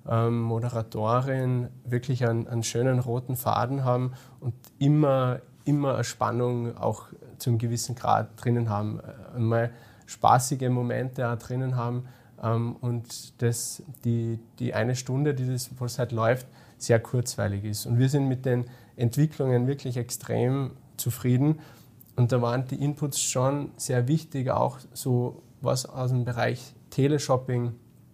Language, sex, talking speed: German, male, 130 wpm